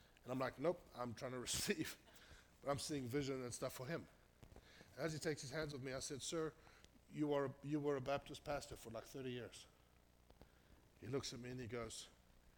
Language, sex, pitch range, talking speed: English, male, 110-145 Hz, 205 wpm